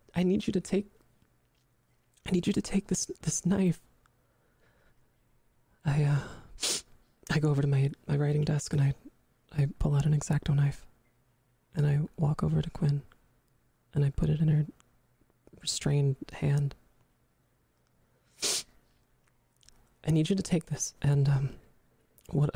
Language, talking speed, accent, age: English, 145 wpm, American, 20-39